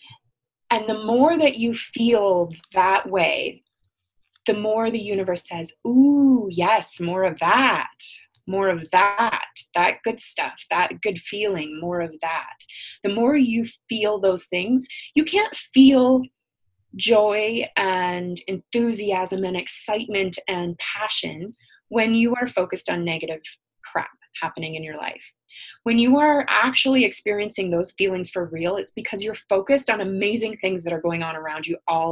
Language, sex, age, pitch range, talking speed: English, female, 20-39, 170-225 Hz, 150 wpm